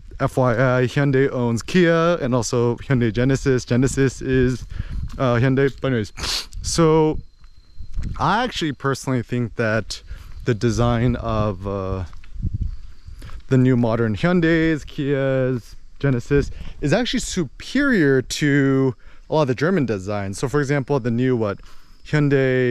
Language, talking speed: English, 125 wpm